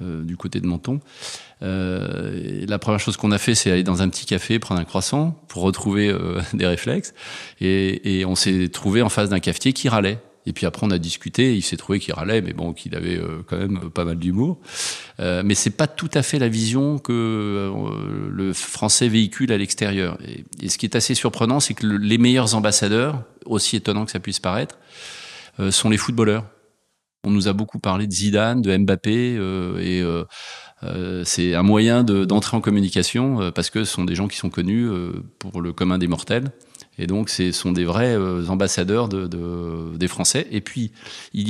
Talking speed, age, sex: 210 wpm, 40-59, male